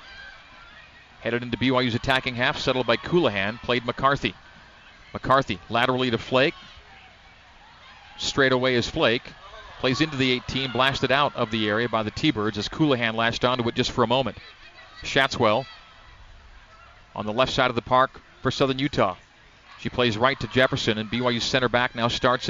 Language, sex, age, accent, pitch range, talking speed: English, male, 40-59, American, 120-140 Hz, 165 wpm